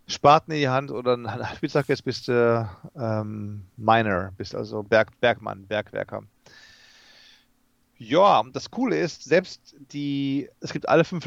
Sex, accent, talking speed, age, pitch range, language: male, German, 145 wpm, 40-59, 115-140 Hz, German